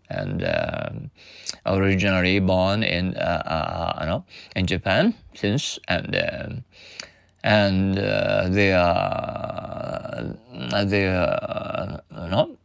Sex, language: male, Japanese